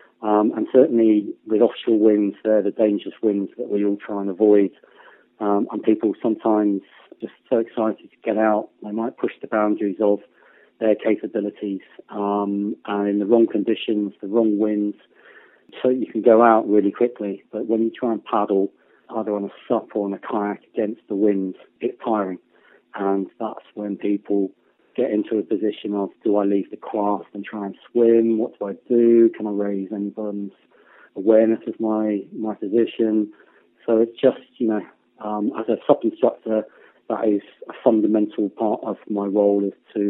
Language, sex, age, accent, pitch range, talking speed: English, male, 40-59, British, 100-110 Hz, 180 wpm